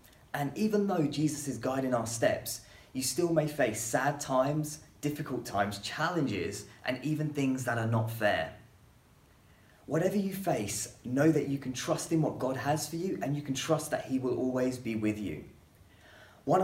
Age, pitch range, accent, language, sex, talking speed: 20-39, 115-155 Hz, British, English, male, 180 wpm